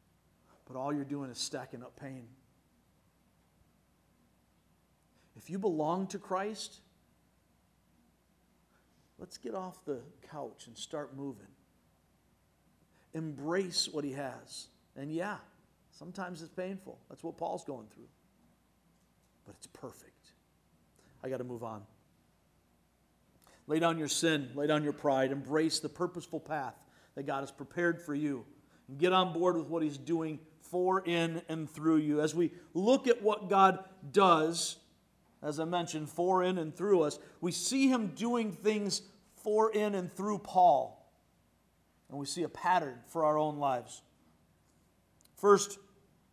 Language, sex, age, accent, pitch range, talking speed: English, male, 50-69, American, 145-195 Hz, 140 wpm